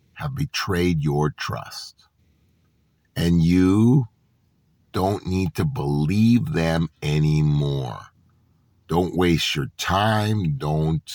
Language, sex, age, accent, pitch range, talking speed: English, male, 50-69, American, 95-155 Hz, 90 wpm